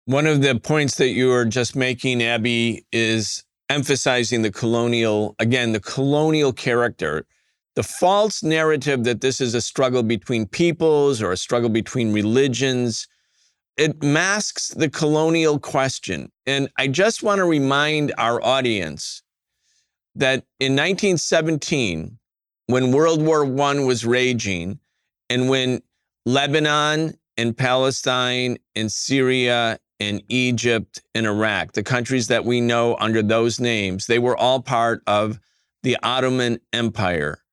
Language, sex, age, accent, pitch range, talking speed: English, male, 40-59, American, 115-140 Hz, 130 wpm